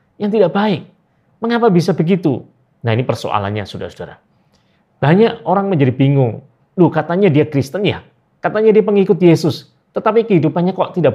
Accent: native